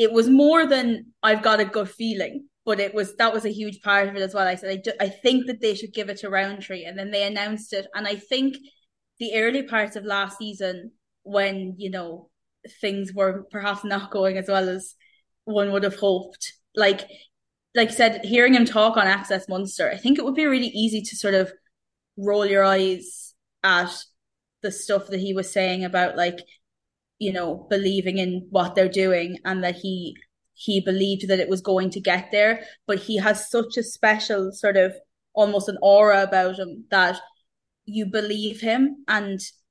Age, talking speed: 20-39, 200 wpm